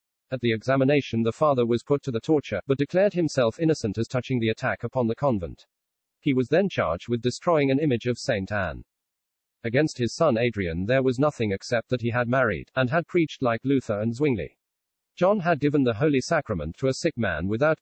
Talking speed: 210 wpm